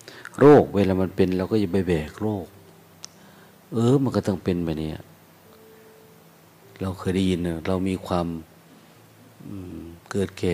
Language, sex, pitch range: Thai, male, 85-100 Hz